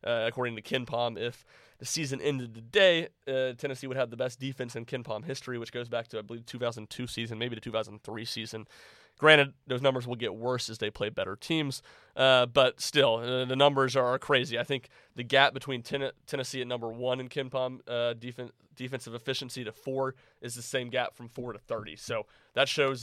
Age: 30-49